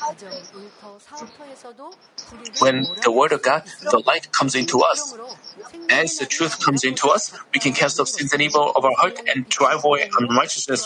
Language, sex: Korean, male